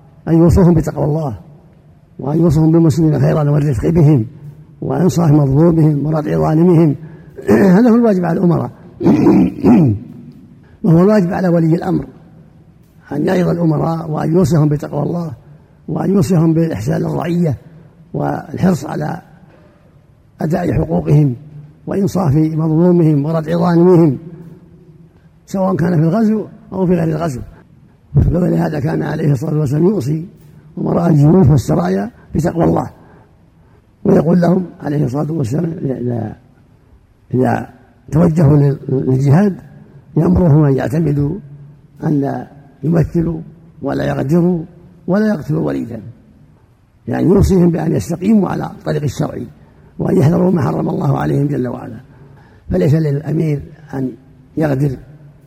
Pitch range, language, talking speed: 145-170 Hz, Arabic, 105 wpm